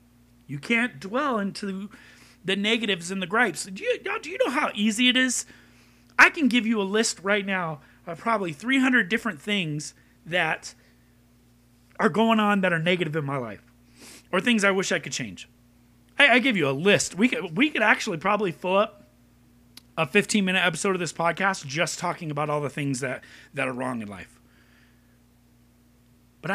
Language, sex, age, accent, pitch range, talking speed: English, male, 30-49, American, 155-225 Hz, 185 wpm